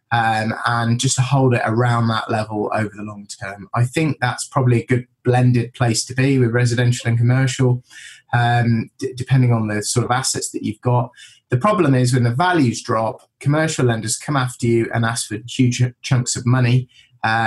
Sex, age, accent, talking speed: male, 20-39, British, 200 wpm